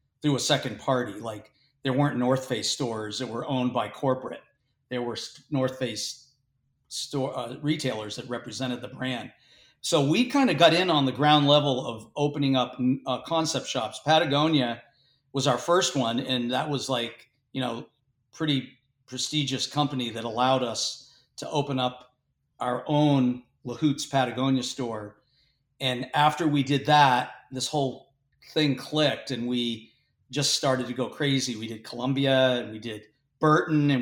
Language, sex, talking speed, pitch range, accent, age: English, male, 160 wpm, 125-140 Hz, American, 40-59